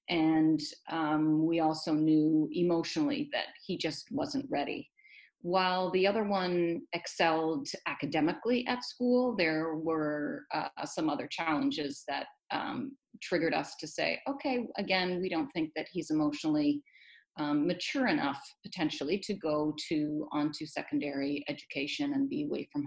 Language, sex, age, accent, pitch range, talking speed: English, female, 40-59, American, 155-245 Hz, 140 wpm